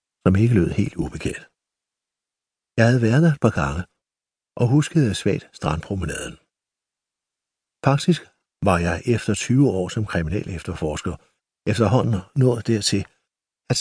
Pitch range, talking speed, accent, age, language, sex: 95-135 Hz, 125 wpm, native, 60-79, Danish, male